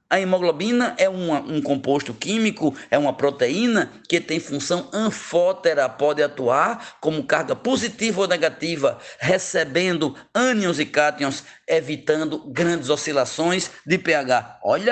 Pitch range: 150-200 Hz